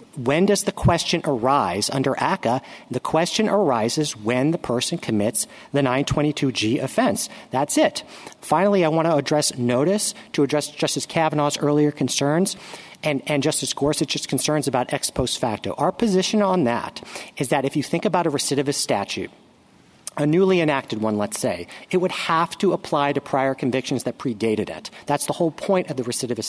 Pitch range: 135-185 Hz